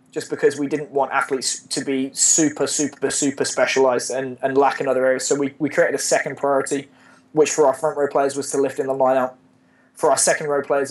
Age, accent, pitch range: 20-39, British, 130-155 Hz